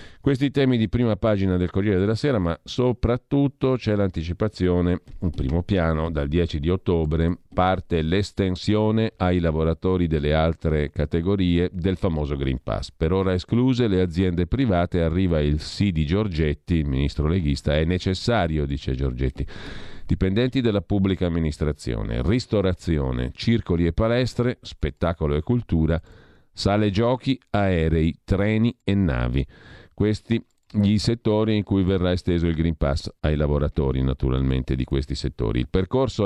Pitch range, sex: 80-105 Hz, male